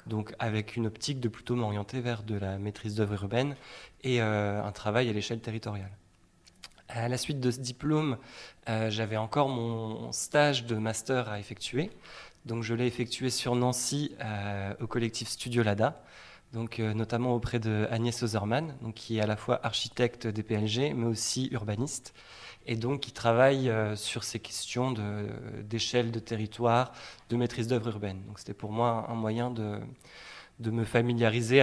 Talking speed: 170 wpm